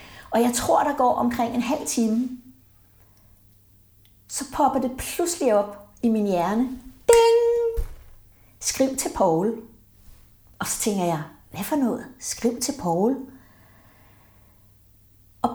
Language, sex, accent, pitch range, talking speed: Danish, female, native, 165-245 Hz, 125 wpm